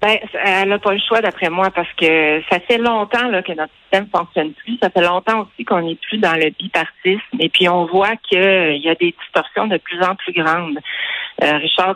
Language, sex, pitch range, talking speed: French, female, 165-205 Hz, 230 wpm